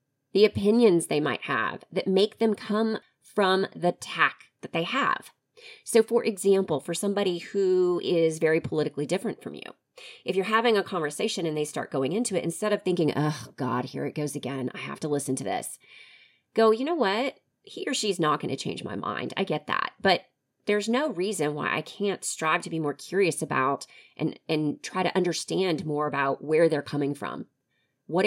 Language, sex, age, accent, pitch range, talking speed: English, female, 30-49, American, 155-225 Hz, 195 wpm